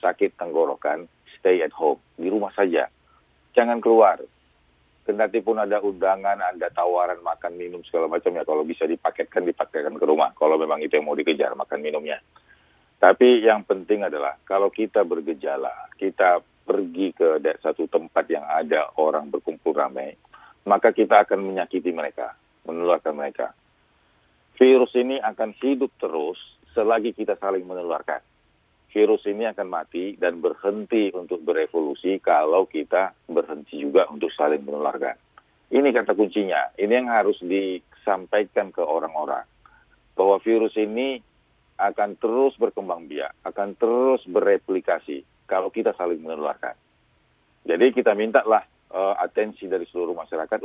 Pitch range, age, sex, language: 90-125 Hz, 40-59, male, Indonesian